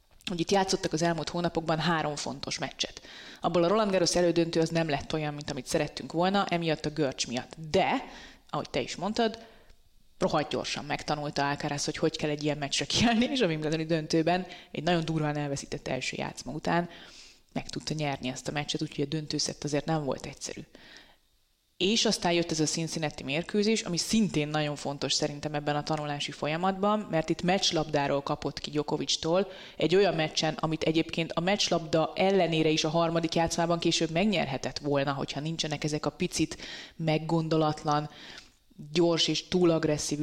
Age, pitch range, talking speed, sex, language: 20-39, 150-170 Hz, 170 wpm, female, Hungarian